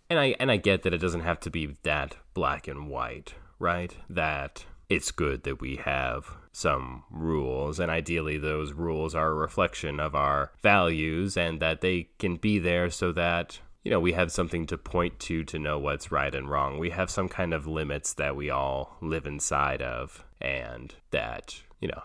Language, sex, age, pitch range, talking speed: English, male, 30-49, 75-90 Hz, 195 wpm